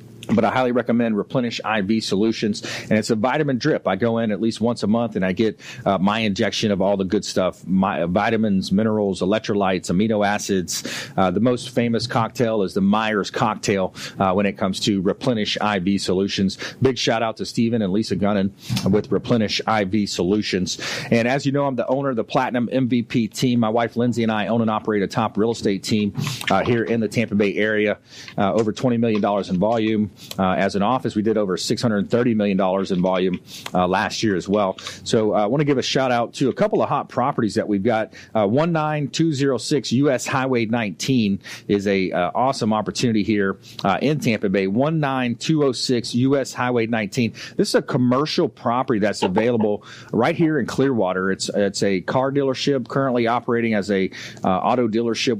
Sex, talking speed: male, 205 wpm